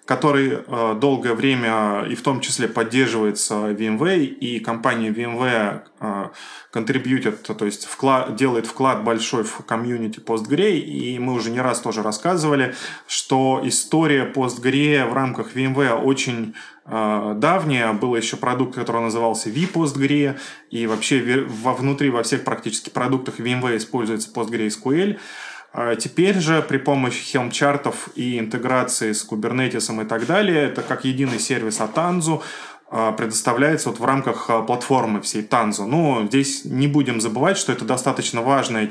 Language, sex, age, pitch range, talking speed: Russian, male, 20-39, 115-135 Hz, 135 wpm